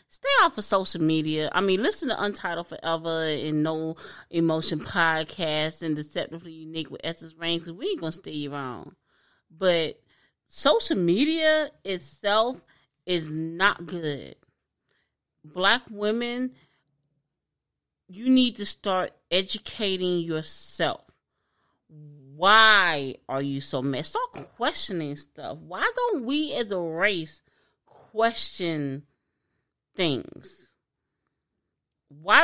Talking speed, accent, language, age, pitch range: 110 wpm, American, English, 30-49, 155-210 Hz